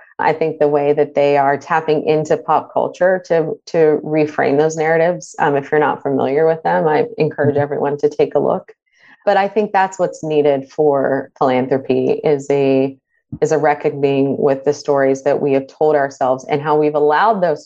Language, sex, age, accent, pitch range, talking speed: English, female, 30-49, American, 145-180 Hz, 185 wpm